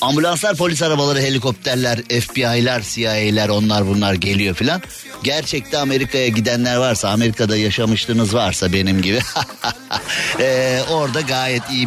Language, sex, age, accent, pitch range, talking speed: Turkish, male, 50-69, native, 110-145 Hz, 115 wpm